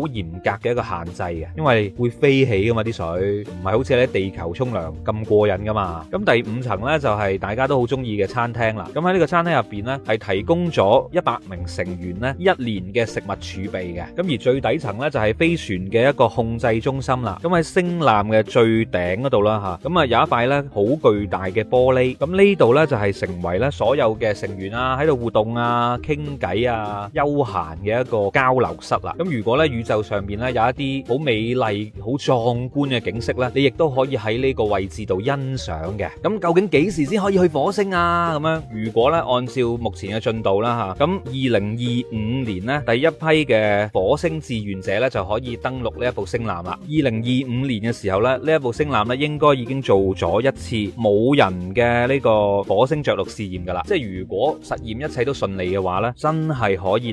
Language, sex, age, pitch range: Chinese, male, 20-39, 100-135 Hz